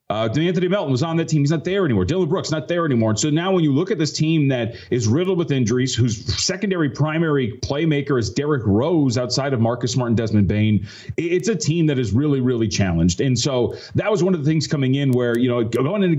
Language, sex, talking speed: English, male, 245 wpm